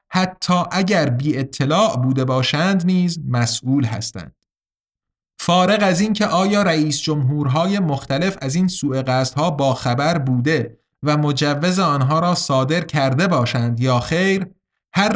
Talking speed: 125 wpm